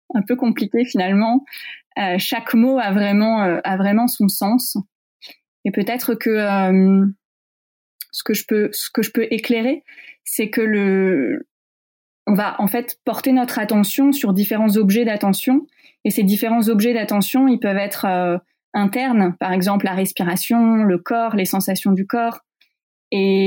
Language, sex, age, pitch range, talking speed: French, female, 20-39, 200-245 Hz, 160 wpm